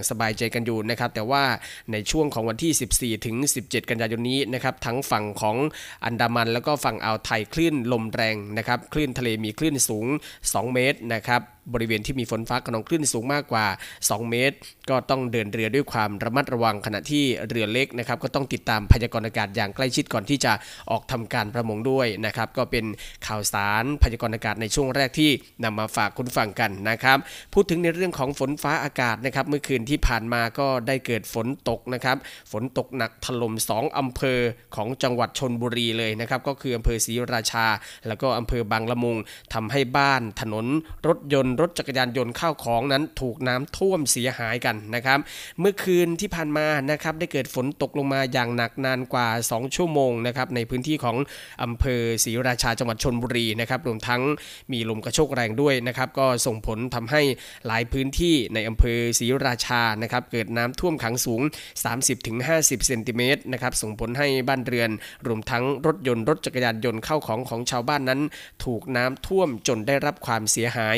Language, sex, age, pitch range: Thai, male, 20-39, 115-135 Hz